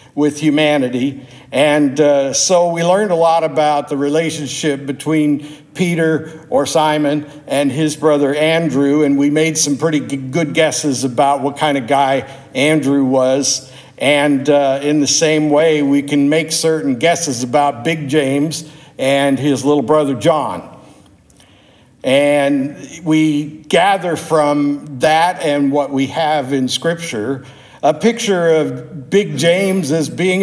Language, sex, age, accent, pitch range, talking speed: English, male, 60-79, American, 140-160 Hz, 140 wpm